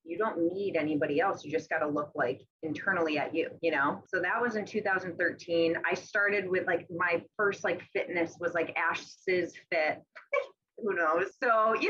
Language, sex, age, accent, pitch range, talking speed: English, female, 20-39, American, 160-185 Hz, 185 wpm